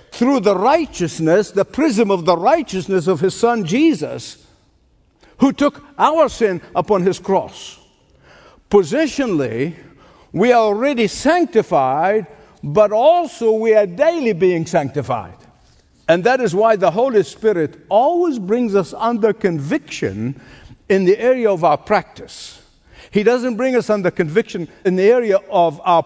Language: English